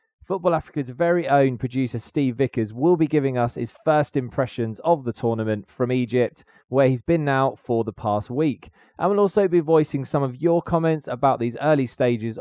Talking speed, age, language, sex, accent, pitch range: 195 wpm, 20-39, English, male, British, 115-150 Hz